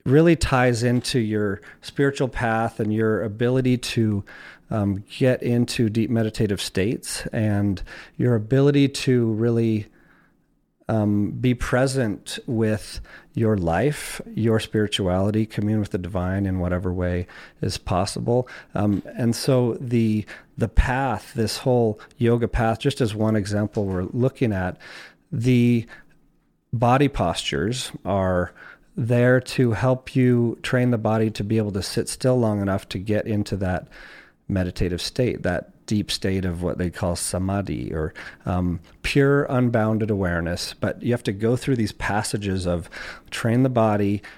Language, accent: English, American